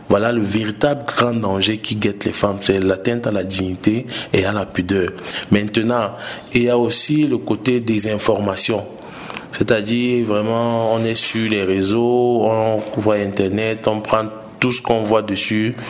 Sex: male